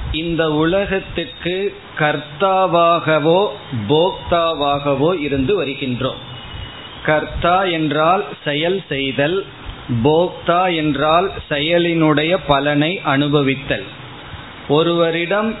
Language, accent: Tamil, native